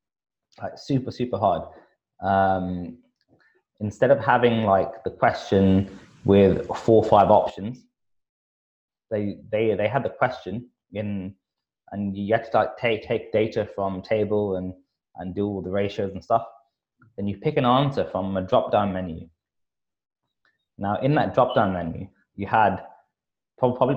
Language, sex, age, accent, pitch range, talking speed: English, male, 20-39, British, 95-115 Hz, 150 wpm